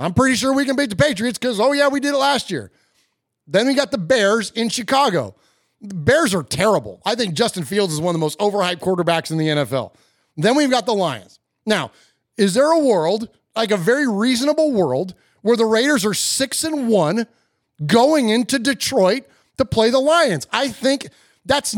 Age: 30-49